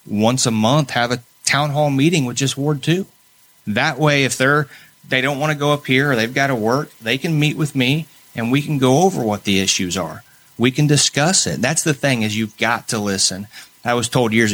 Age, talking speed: 30-49, 240 wpm